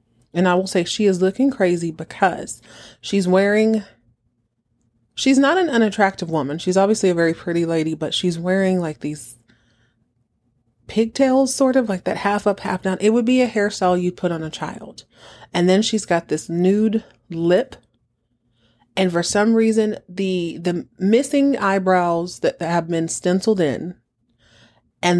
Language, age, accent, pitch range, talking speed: English, 30-49, American, 150-190 Hz, 165 wpm